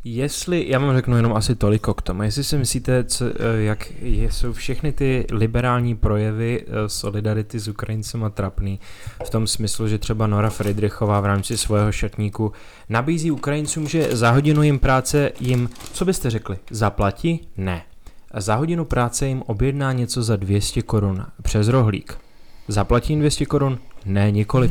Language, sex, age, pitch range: Czech, male, 20-39, 100-125 Hz